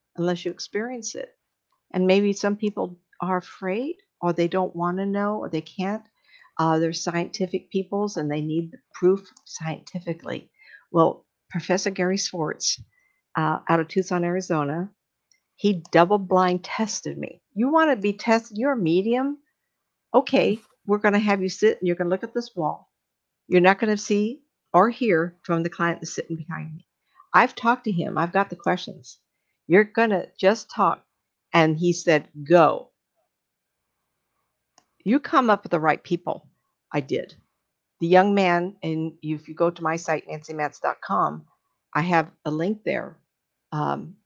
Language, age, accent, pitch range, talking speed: English, 60-79, American, 165-205 Hz, 165 wpm